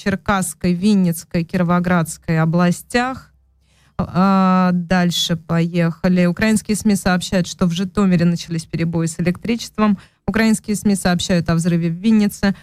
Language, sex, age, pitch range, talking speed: Russian, female, 20-39, 170-195 Hz, 110 wpm